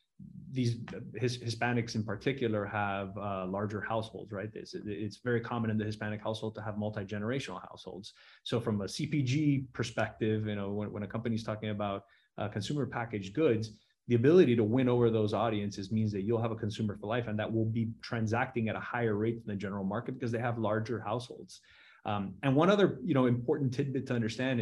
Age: 20-39